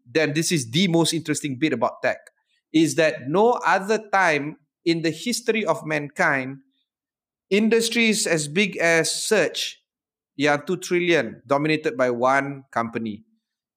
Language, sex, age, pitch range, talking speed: Malay, male, 30-49, 130-170 Hz, 140 wpm